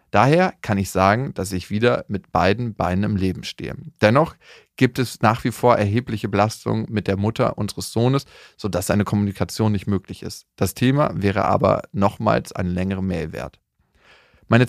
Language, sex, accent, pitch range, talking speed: German, male, German, 95-120 Hz, 170 wpm